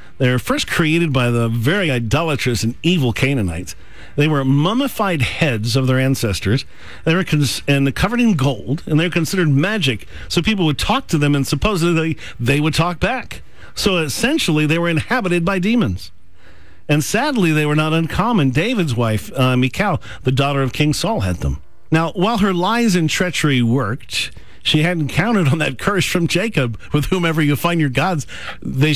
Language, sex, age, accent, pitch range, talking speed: English, male, 50-69, American, 125-170 Hz, 180 wpm